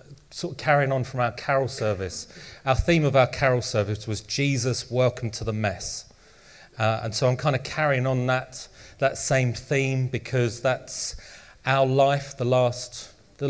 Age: 30-49